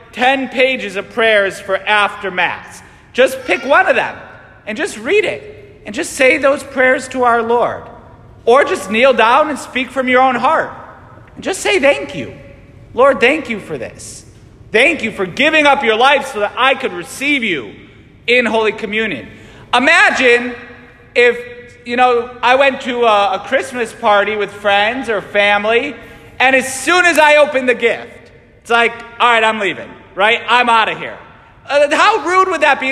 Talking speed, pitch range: 180 wpm, 225-275 Hz